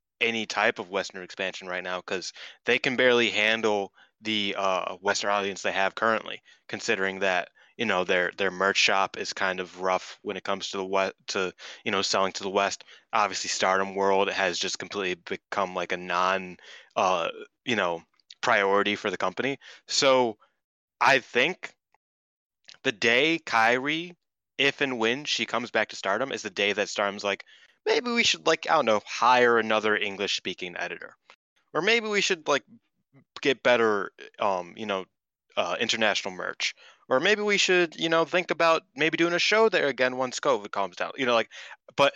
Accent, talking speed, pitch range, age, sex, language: American, 180 wpm, 95-140 Hz, 20-39, male, English